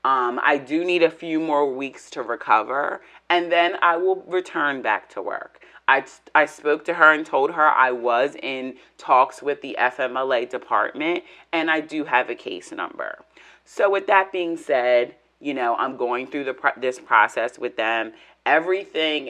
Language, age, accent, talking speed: English, 30-49, American, 180 wpm